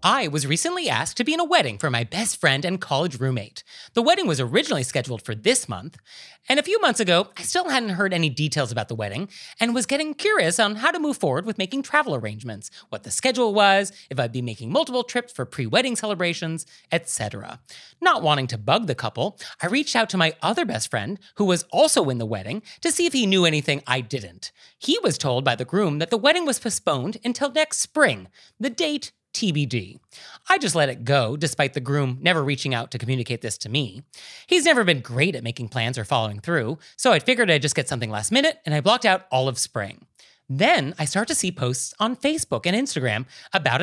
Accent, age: American, 30-49